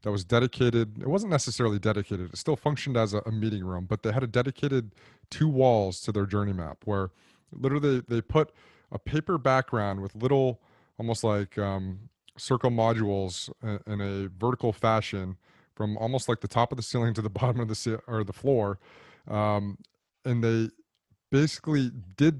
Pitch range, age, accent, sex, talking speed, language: 105-125 Hz, 30-49, American, male, 175 wpm, English